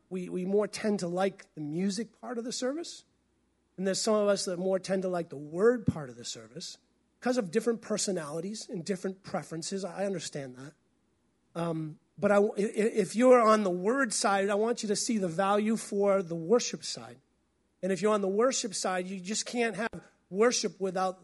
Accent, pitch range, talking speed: American, 175-220 Hz, 200 wpm